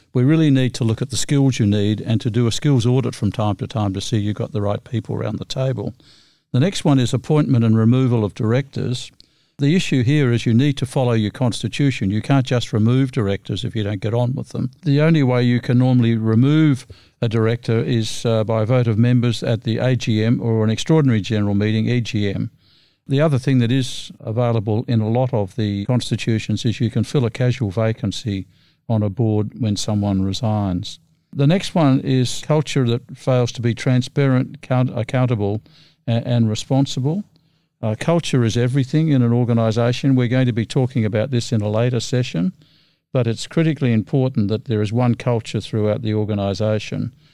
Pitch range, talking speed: 110-135 Hz, 200 wpm